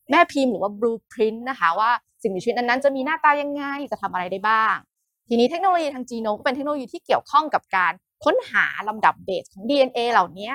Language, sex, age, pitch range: Thai, female, 20-39, 200-265 Hz